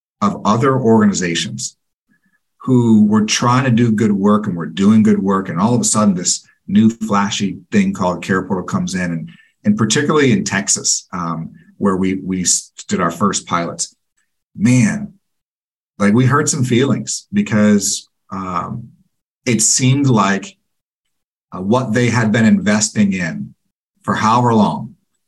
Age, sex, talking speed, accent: 50-69, male, 150 wpm, American